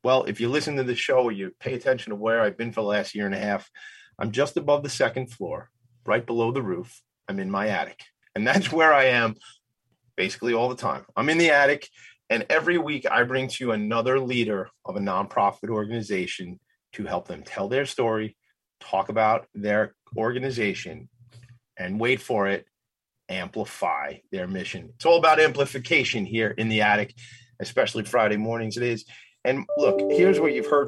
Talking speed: 190 wpm